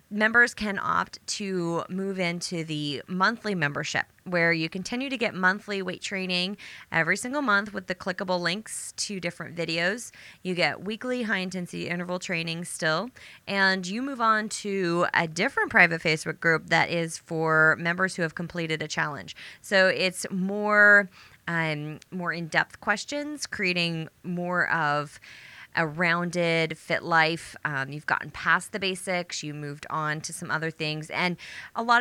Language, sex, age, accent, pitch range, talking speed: English, female, 20-39, American, 155-185 Hz, 155 wpm